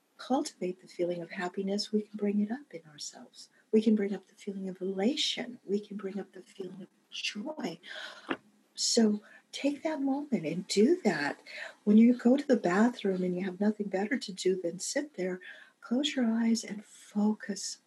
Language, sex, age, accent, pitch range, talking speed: English, female, 50-69, American, 185-225 Hz, 190 wpm